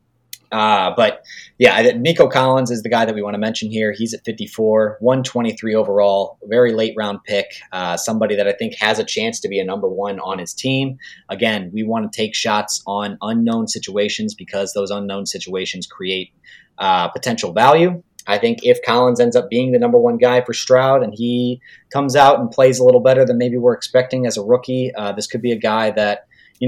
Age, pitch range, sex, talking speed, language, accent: 30-49, 105-130 Hz, male, 210 wpm, English, American